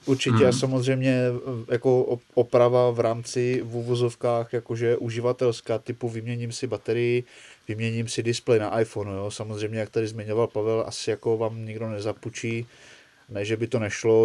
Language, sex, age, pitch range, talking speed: Czech, male, 20-39, 115-125 Hz, 150 wpm